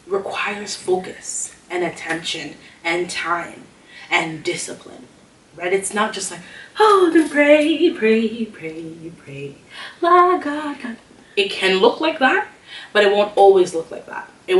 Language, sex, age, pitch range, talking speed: English, female, 20-39, 170-240 Hz, 140 wpm